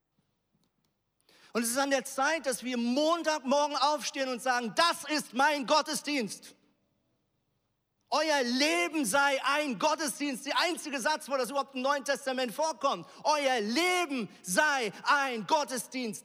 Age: 40-59